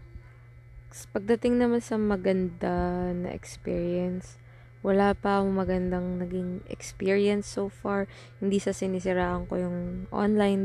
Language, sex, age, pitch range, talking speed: Filipino, female, 20-39, 120-195 Hz, 105 wpm